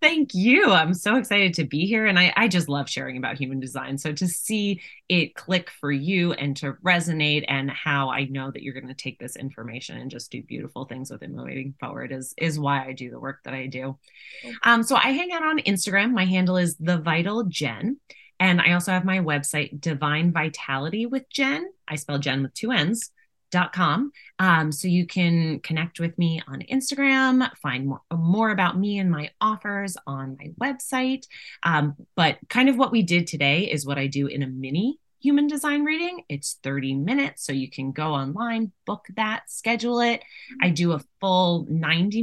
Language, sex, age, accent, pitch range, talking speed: English, female, 20-39, American, 140-210 Hz, 200 wpm